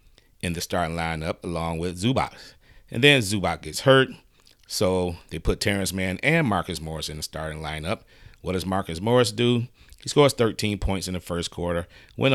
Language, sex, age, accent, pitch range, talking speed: English, male, 40-59, American, 85-110 Hz, 185 wpm